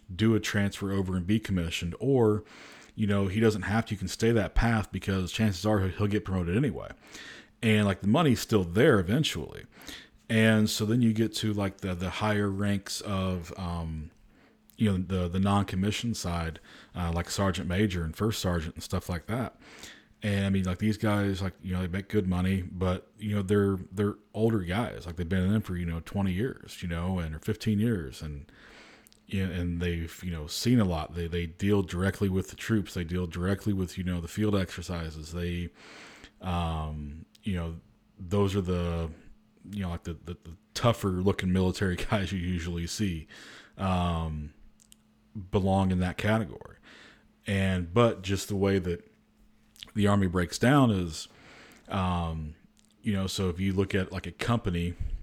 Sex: male